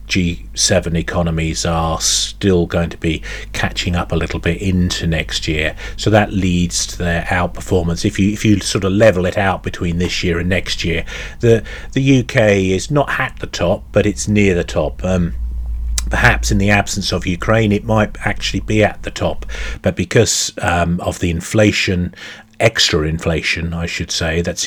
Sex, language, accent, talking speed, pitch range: male, English, British, 180 wpm, 85-105 Hz